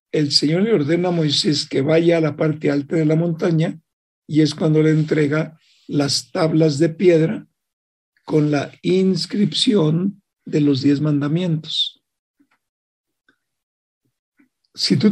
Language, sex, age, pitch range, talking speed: Spanish, male, 60-79, 150-175 Hz, 130 wpm